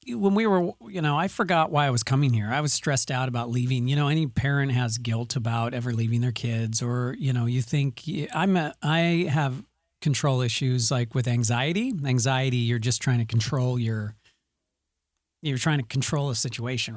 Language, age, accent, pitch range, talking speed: English, 40-59, American, 115-145 Hz, 200 wpm